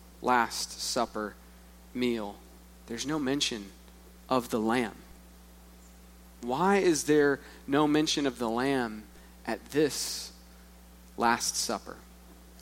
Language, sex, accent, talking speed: English, male, American, 100 wpm